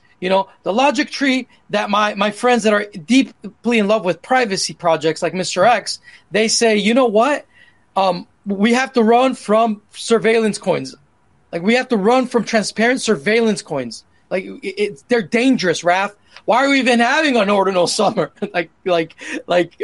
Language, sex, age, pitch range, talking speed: English, male, 30-49, 185-240 Hz, 170 wpm